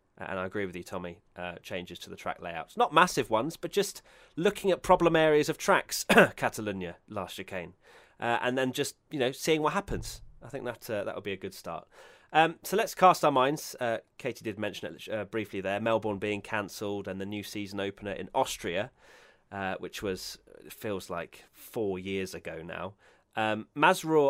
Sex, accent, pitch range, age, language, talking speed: male, British, 95-135 Hz, 30-49, English, 205 wpm